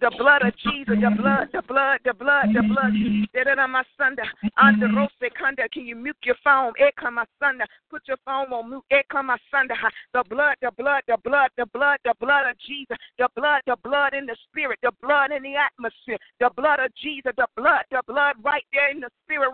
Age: 40-59